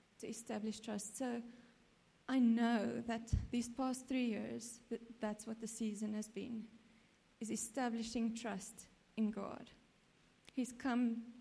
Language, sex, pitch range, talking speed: English, female, 220-250 Hz, 125 wpm